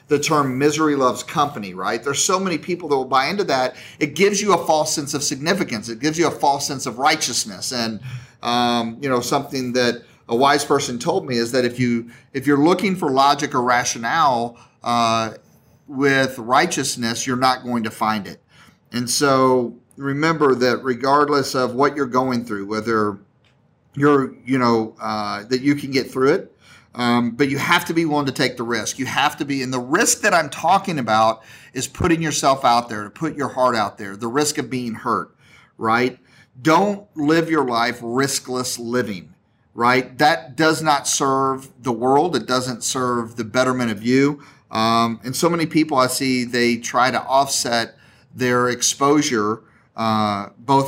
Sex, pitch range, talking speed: male, 120-145 Hz, 185 wpm